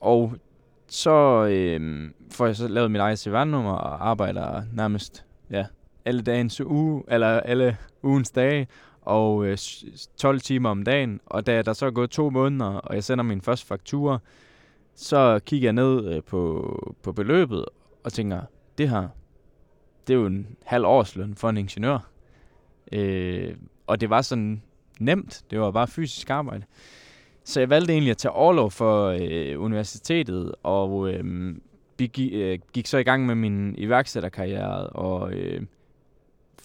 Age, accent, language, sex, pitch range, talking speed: 20-39, native, Danish, male, 100-130 Hz, 155 wpm